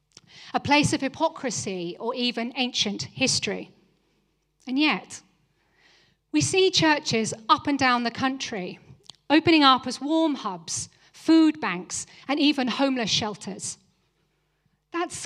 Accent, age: British, 40-59